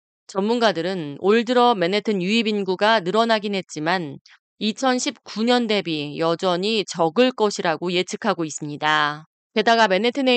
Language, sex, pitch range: Korean, female, 170-235 Hz